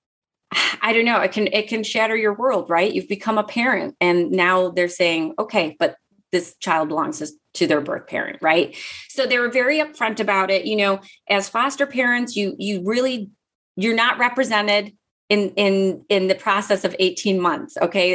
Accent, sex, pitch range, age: American, female, 180-230 Hz, 30-49